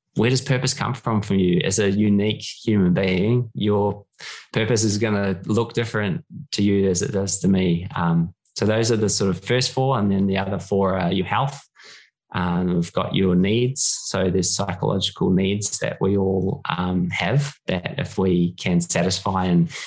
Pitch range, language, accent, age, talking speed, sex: 90-110 Hz, English, Australian, 20-39, 195 wpm, male